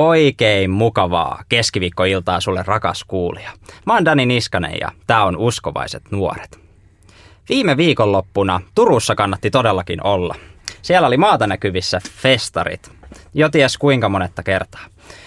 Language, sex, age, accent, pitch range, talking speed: Finnish, male, 20-39, native, 95-120 Hz, 120 wpm